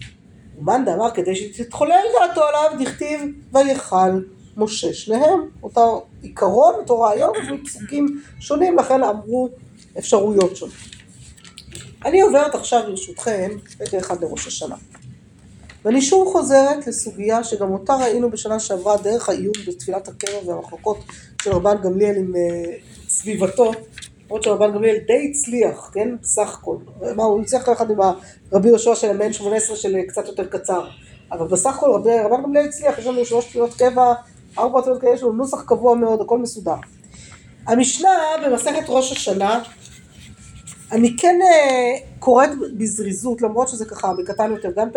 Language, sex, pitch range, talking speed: Hebrew, female, 200-260 Hz, 140 wpm